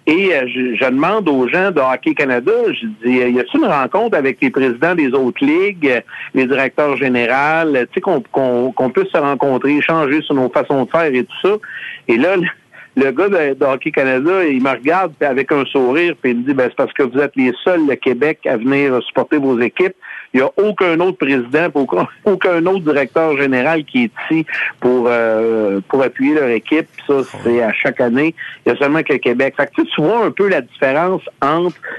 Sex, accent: male, Canadian